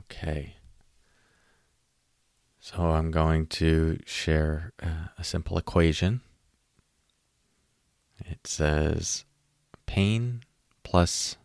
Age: 20-39